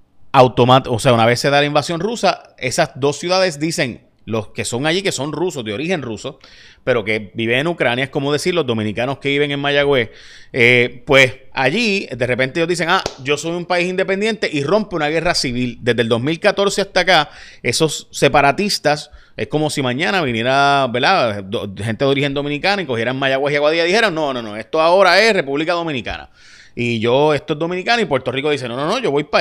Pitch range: 120-175 Hz